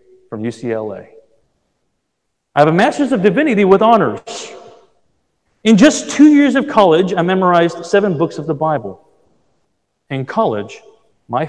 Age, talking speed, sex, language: 40-59, 135 wpm, male, English